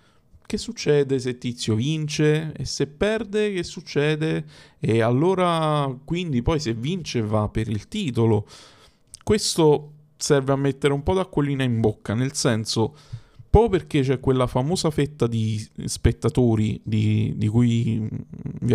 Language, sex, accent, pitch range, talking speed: Italian, male, native, 115-145 Hz, 140 wpm